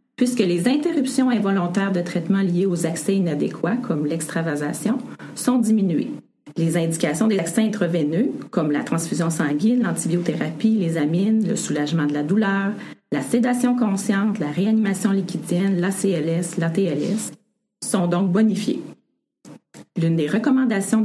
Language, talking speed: French, 135 wpm